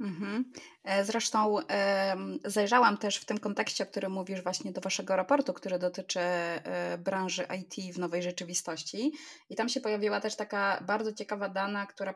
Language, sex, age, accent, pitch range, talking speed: Polish, female, 20-39, native, 185-220 Hz, 150 wpm